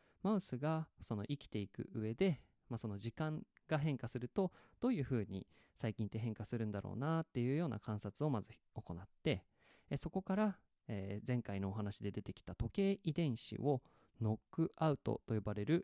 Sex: male